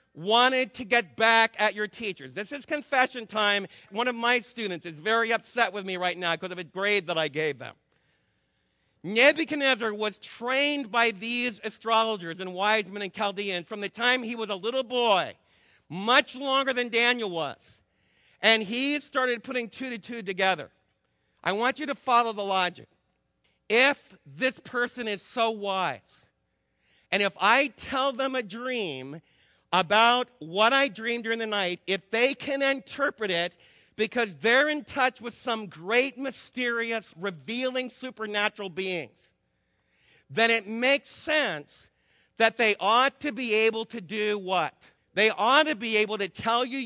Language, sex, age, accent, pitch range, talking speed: English, male, 50-69, American, 190-250 Hz, 160 wpm